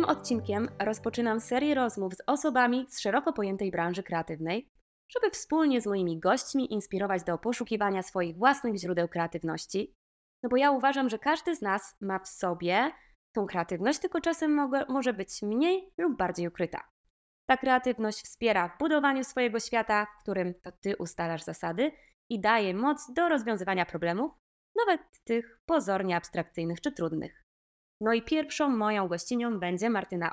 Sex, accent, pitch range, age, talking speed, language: female, native, 185-270 Hz, 20-39, 150 wpm, Polish